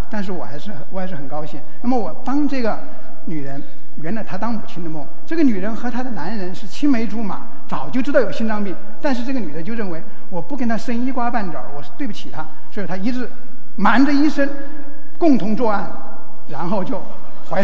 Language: Chinese